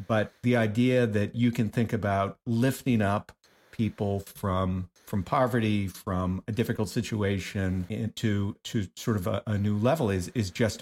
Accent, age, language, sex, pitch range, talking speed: American, 50-69, English, male, 100-115 Hz, 160 wpm